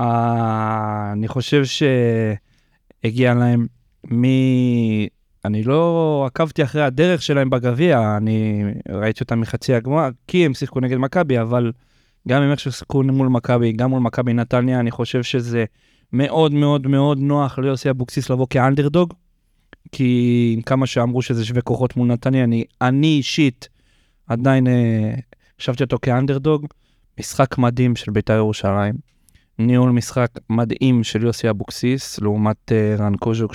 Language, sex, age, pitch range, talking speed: Hebrew, male, 20-39, 115-135 Hz, 130 wpm